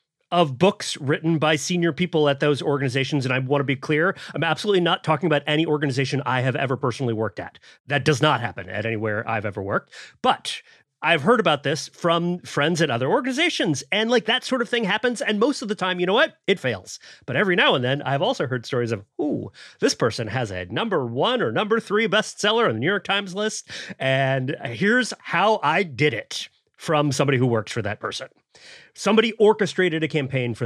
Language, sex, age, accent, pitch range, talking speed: English, male, 30-49, American, 130-215 Hz, 215 wpm